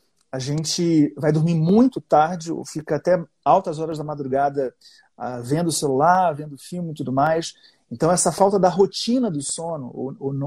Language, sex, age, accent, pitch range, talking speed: Portuguese, male, 30-49, Brazilian, 150-180 Hz, 165 wpm